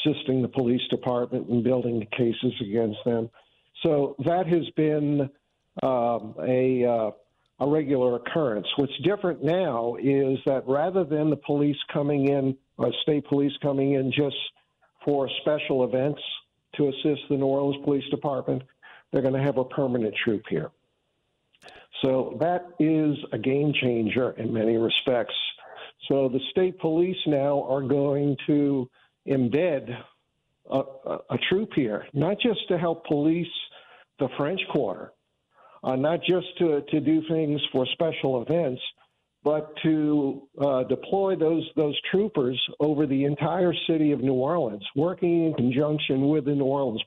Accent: American